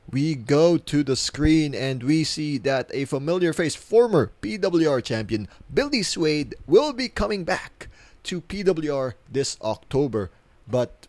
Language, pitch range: English, 105-145 Hz